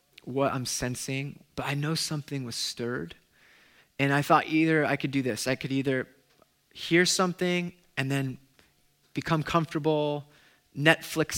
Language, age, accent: English, 20-39, American